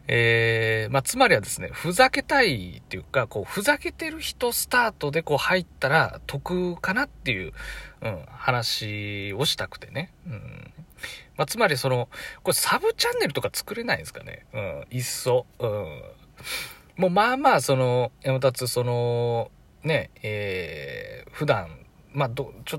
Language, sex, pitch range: Japanese, male, 120-180 Hz